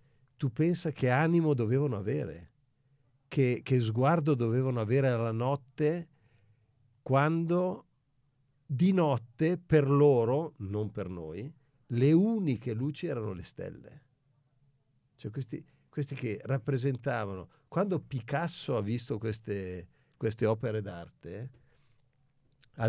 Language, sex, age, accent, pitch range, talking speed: Italian, male, 50-69, native, 110-140 Hz, 105 wpm